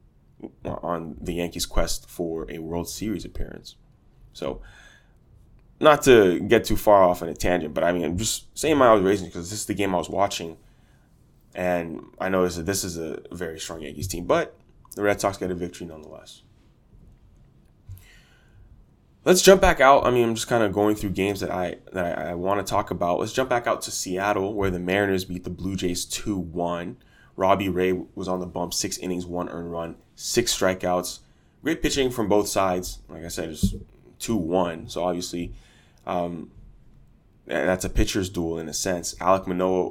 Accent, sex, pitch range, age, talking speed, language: American, male, 85-100 Hz, 20-39, 190 wpm, English